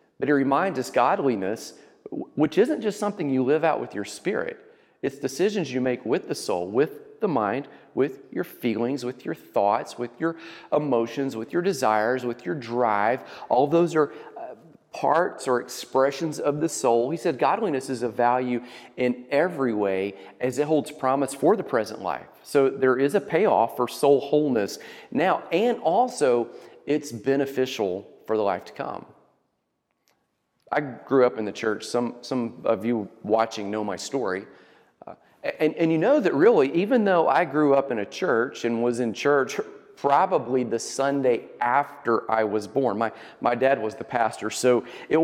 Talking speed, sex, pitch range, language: 175 wpm, male, 120-155 Hz, English